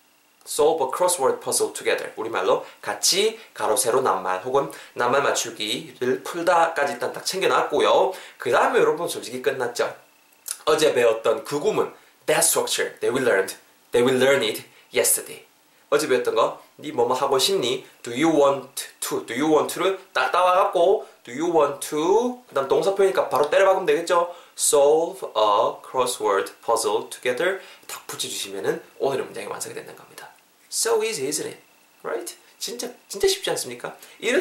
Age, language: 20-39, Korean